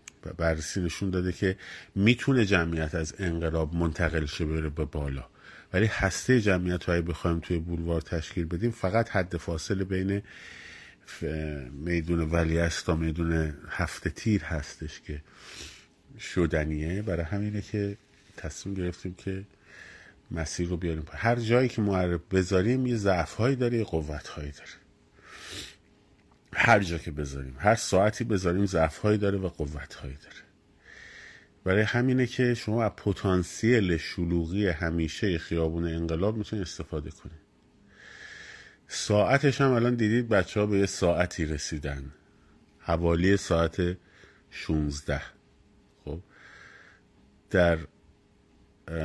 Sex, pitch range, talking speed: male, 80-100 Hz, 115 wpm